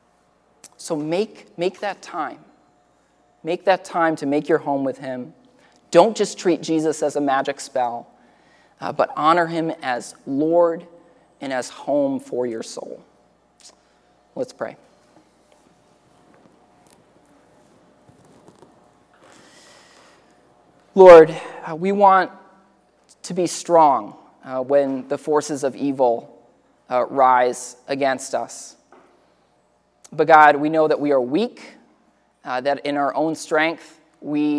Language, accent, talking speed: English, American, 120 wpm